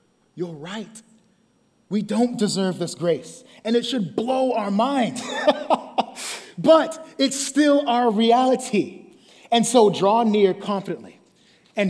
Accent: American